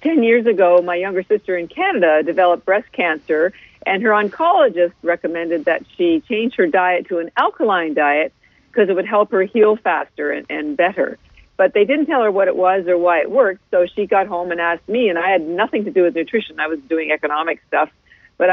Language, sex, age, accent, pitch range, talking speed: English, female, 50-69, American, 180-240 Hz, 215 wpm